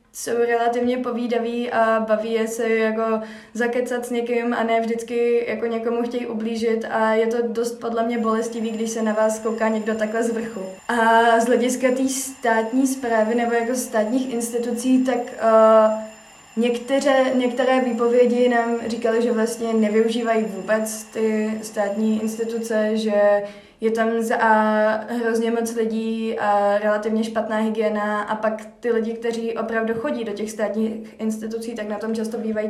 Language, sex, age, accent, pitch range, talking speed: Czech, female, 20-39, native, 215-235 Hz, 150 wpm